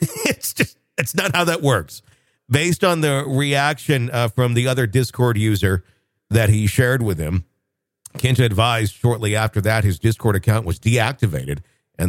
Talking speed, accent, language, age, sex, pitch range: 165 wpm, American, English, 50-69, male, 110-140 Hz